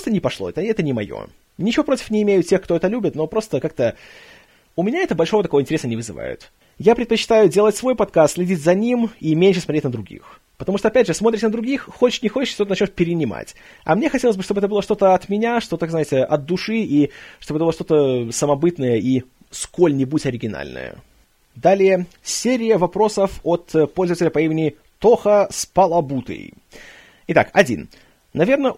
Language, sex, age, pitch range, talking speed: Russian, male, 30-49, 150-215 Hz, 180 wpm